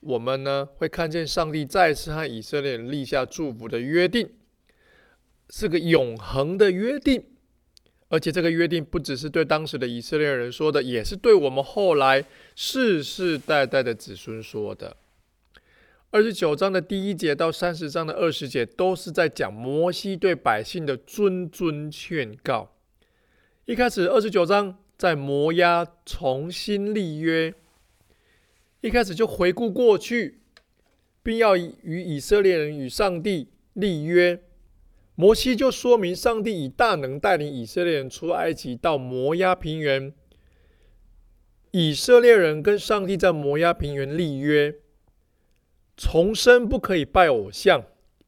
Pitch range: 135-185 Hz